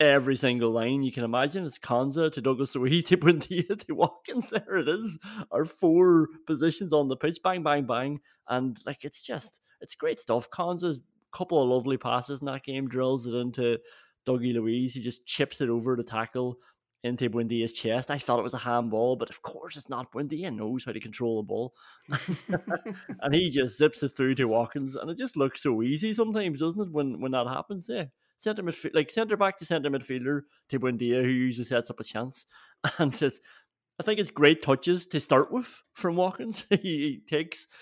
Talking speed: 195 wpm